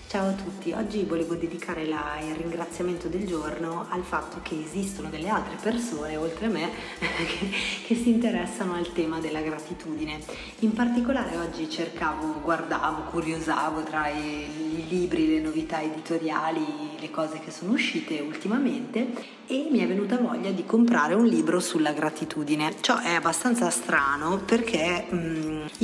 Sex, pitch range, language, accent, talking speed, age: female, 160-220 Hz, Italian, native, 150 wpm, 30-49